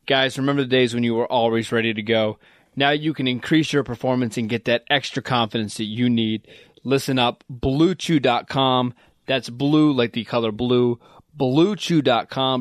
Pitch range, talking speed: 120-140 Hz, 165 wpm